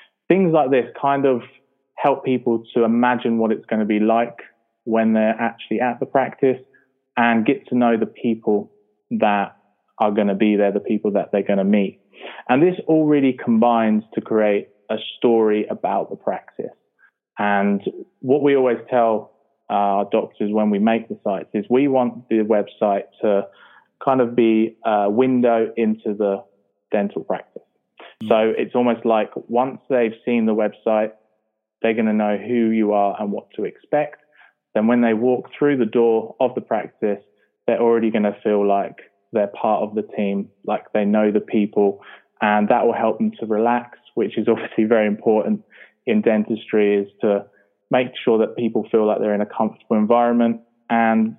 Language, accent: English, British